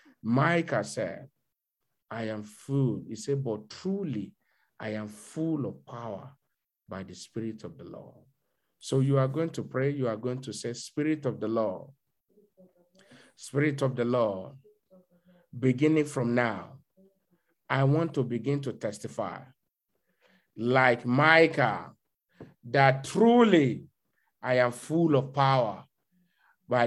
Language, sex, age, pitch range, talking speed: English, male, 50-69, 125-155 Hz, 130 wpm